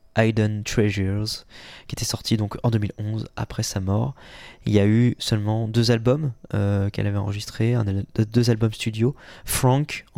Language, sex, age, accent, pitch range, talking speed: French, male, 20-39, French, 105-120 Hz, 175 wpm